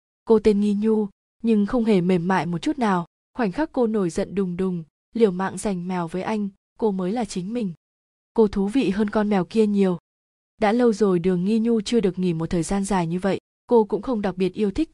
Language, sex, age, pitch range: Vietnamese, female, 20-39, 185-225 Hz